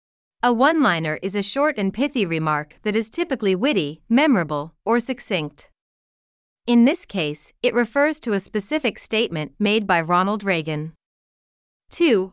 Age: 30-49